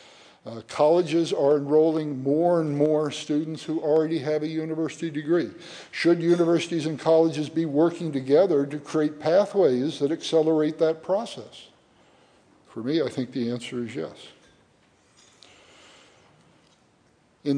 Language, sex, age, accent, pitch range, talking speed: English, male, 60-79, American, 140-175 Hz, 125 wpm